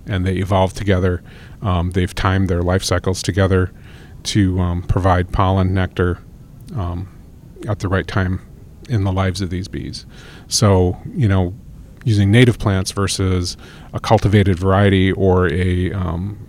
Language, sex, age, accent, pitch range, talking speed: English, male, 30-49, American, 95-110 Hz, 145 wpm